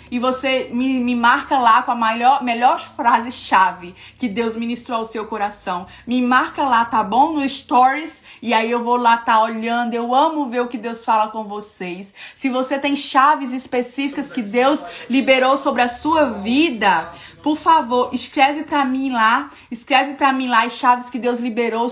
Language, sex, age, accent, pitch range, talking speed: Portuguese, female, 20-39, Brazilian, 225-265 Hz, 185 wpm